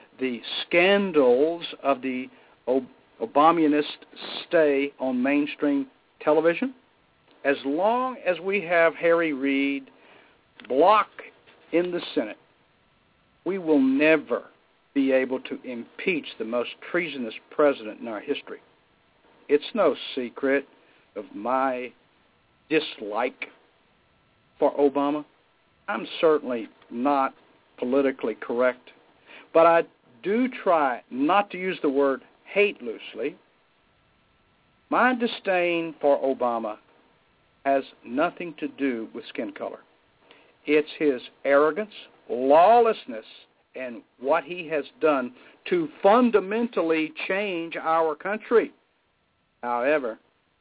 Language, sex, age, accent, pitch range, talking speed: English, male, 60-79, American, 135-175 Hz, 100 wpm